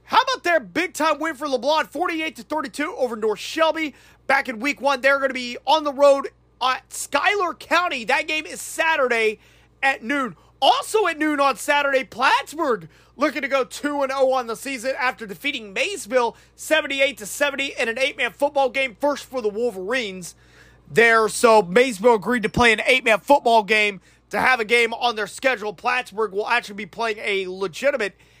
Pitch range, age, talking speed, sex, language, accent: 220-295 Hz, 30-49, 175 wpm, male, English, American